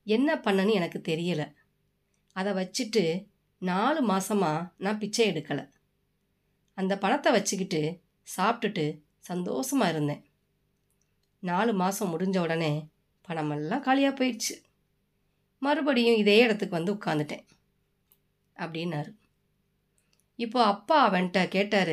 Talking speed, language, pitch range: 95 wpm, Tamil, 165-215 Hz